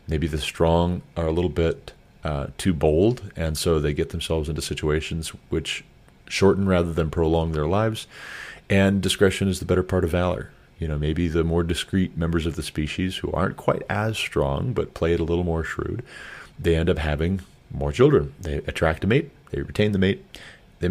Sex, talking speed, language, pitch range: male, 200 wpm, English, 80-95 Hz